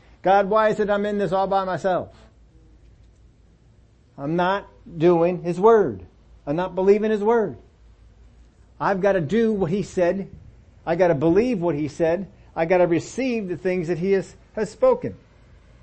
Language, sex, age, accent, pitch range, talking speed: English, male, 60-79, American, 145-205 Hz, 170 wpm